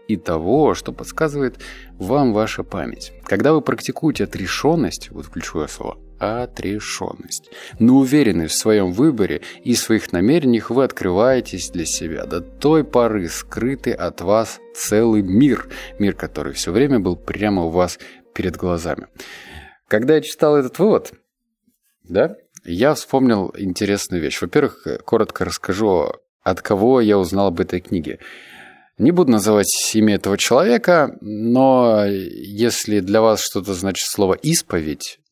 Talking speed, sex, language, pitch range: 135 wpm, male, Russian, 95-135 Hz